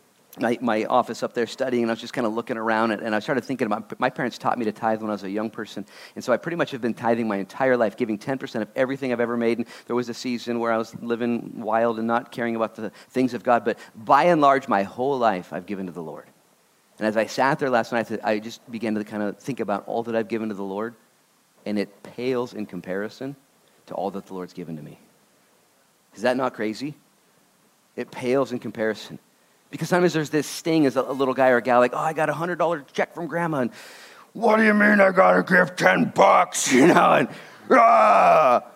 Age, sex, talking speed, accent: 40-59, male, 245 wpm, American